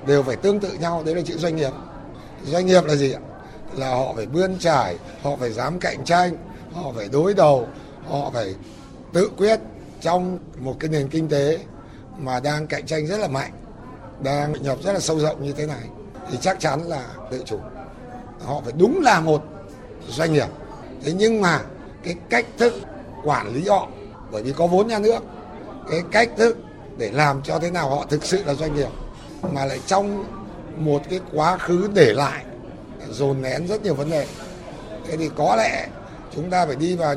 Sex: male